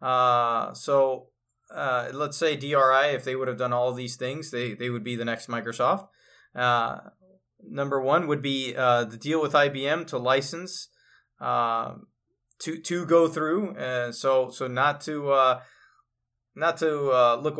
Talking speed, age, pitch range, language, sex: 170 wpm, 20-39, 125-150 Hz, English, male